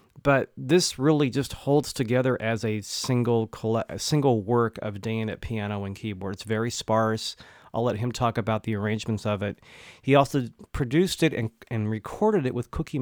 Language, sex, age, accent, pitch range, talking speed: English, male, 30-49, American, 105-130 Hz, 185 wpm